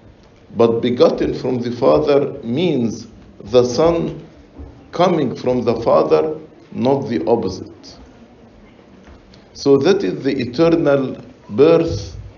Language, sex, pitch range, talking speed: English, male, 115-145 Hz, 100 wpm